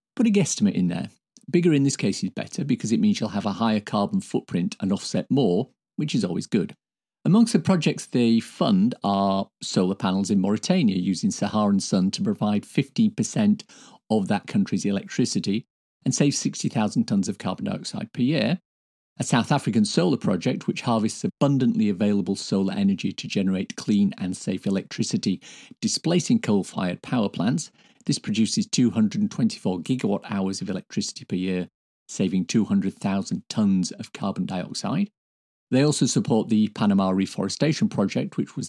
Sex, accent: male, British